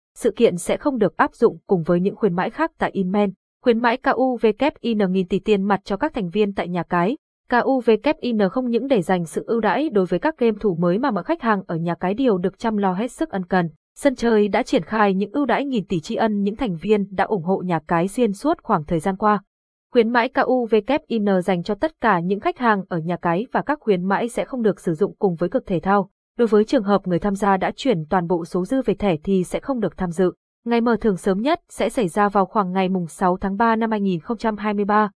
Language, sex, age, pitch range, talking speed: Vietnamese, female, 20-39, 190-235 Hz, 250 wpm